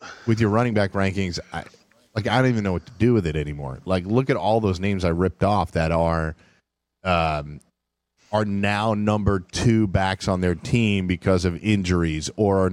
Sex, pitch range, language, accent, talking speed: male, 90-120 Hz, English, American, 200 wpm